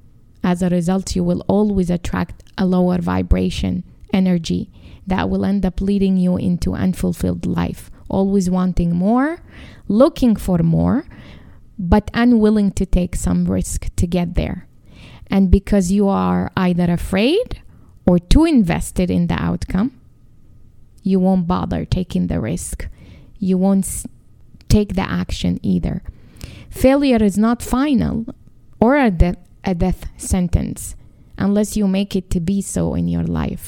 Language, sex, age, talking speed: English, female, 20-39, 140 wpm